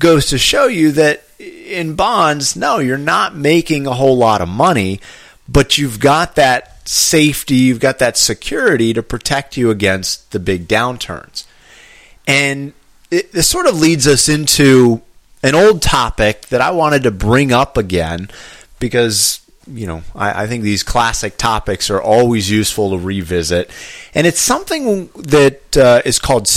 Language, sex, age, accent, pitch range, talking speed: English, male, 30-49, American, 105-150 Hz, 160 wpm